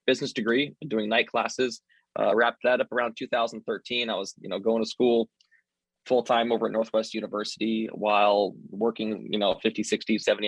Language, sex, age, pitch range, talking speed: English, male, 20-39, 105-115 Hz, 180 wpm